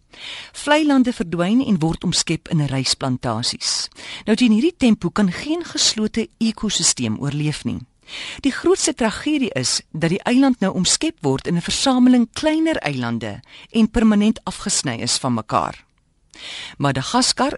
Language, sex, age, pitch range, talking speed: Dutch, female, 40-59, 140-230 Hz, 135 wpm